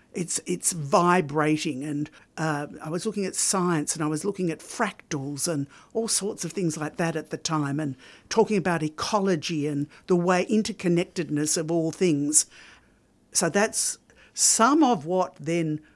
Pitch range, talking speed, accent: 150-185 Hz, 160 wpm, Australian